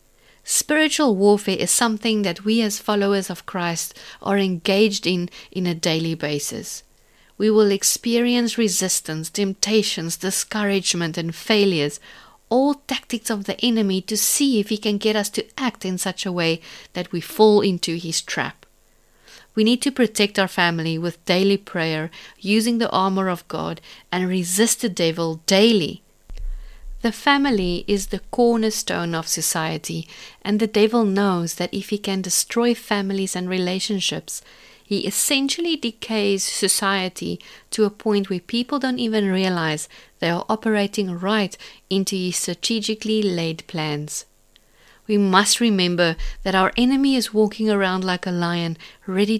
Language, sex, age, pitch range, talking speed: English, female, 50-69, 175-220 Hz, 145 wpm